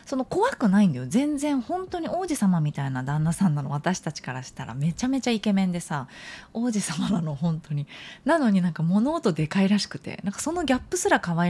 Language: Japanese